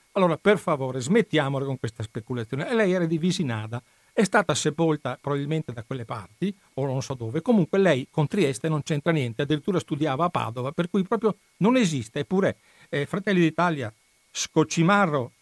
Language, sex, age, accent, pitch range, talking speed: Italian, male, 60-79, native, 130-175 Hz, 165 wpm